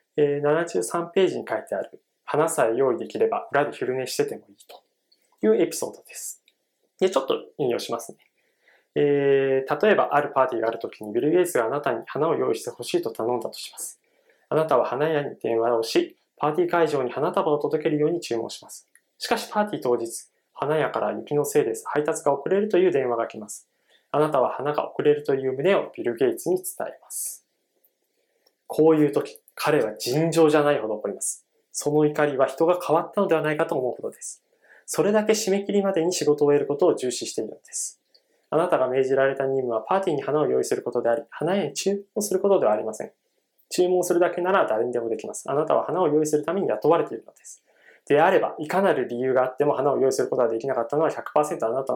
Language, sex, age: Japanese, male, 20-39